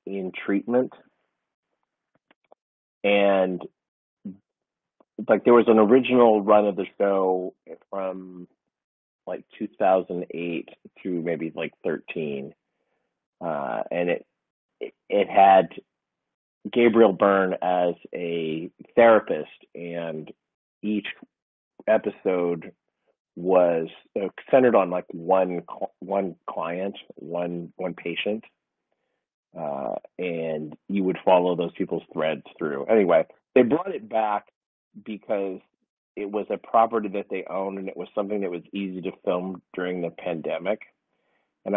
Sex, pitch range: male, 90-105 Hz